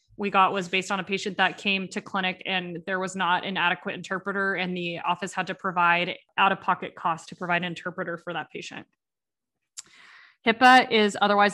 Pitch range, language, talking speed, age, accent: 185-205 Hz, English, 185 wpm, 20-39, American